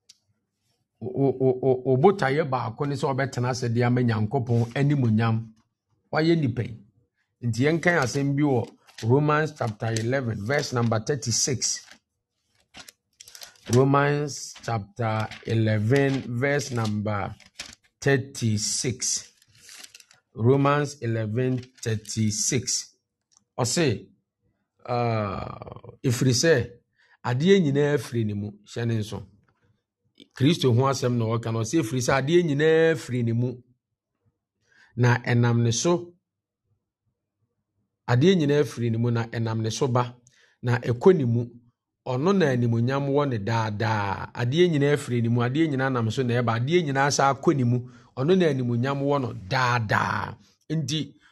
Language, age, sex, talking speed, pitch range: English, 50-69, male, 55 wpm, 115-140 Hz